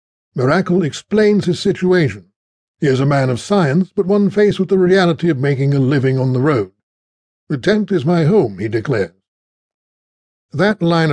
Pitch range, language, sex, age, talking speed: 125-165 Hz, English, male, 60-79, 175 wpm